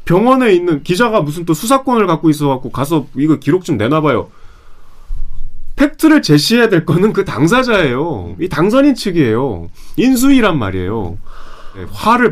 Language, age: Korean, 30-49